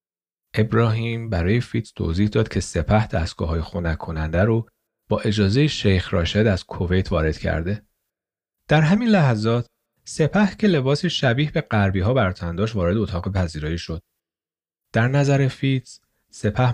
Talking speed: 135 wpm